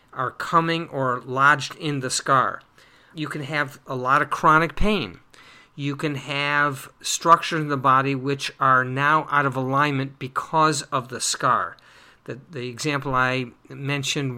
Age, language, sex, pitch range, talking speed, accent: 50-69, English, male, 130-155 Hz, 155 wpm, American